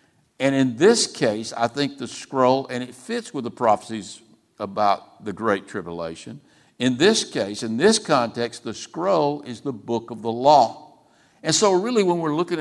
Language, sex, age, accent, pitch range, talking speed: English, male, 60-79, American, 115-145 Hz, 180 wpm